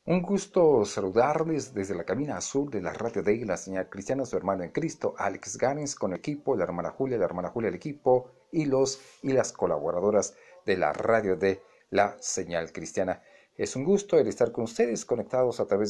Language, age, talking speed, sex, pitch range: Spanish, 50-69, 200 wpm, male, 115-170 Hz